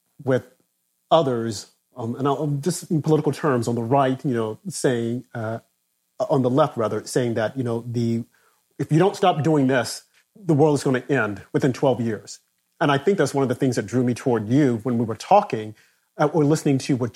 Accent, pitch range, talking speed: American, 120-160 Hz, 215 wpm